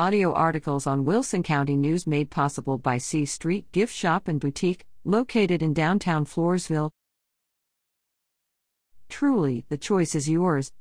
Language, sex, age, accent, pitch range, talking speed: English, female, 50-69, American, 140-190 Hz, 135 wpm